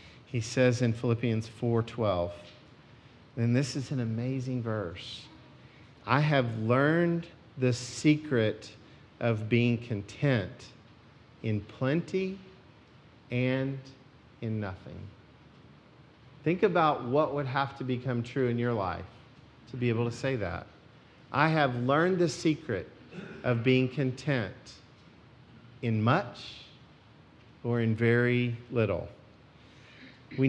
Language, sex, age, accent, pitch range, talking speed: English, male, 50-69, American, 115-140 Hz, 110 wpm